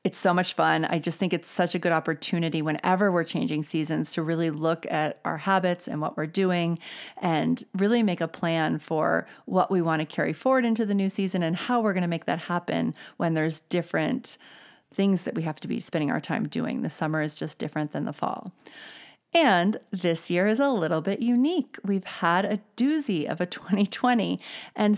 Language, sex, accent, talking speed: English, female, American, 210 wpm